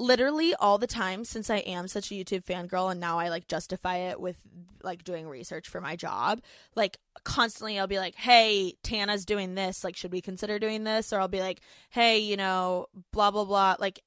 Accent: American